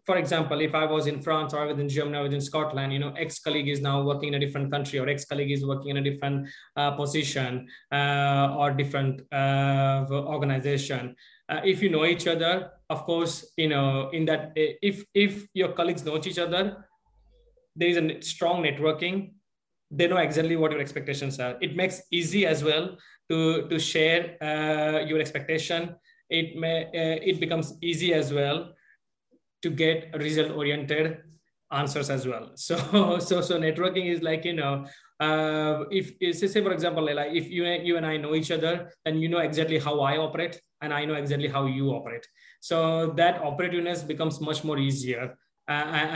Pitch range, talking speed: 145-170 Hz, 185 wpm